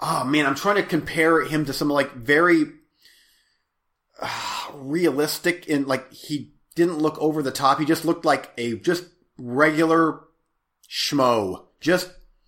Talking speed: 145 wpm